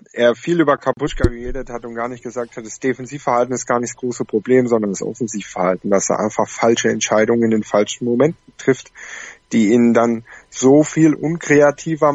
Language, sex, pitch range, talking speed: German, male, 115-145 Hz, 190 wpm